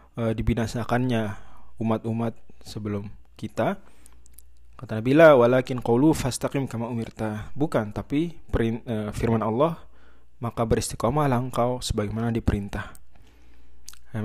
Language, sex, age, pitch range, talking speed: Indonesian, male, 20-39, 105-135 Hz, 90 wpm